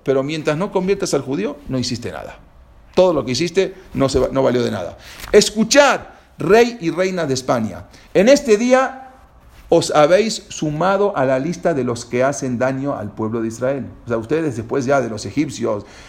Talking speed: 190 wpm